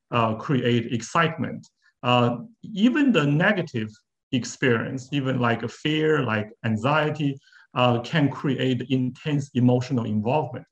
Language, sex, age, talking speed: English, male, 50-69, 110 wpm